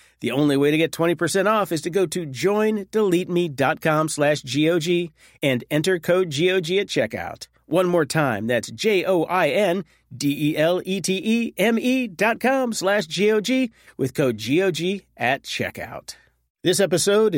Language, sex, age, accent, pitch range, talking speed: English, male, 40-59, American, 135-185 Hz, 125 wpm